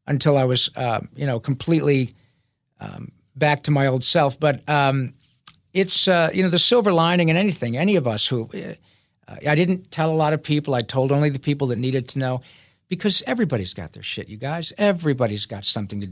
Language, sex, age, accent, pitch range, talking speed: English, male, 50-69, American, 130-170 Hz, 210 wpm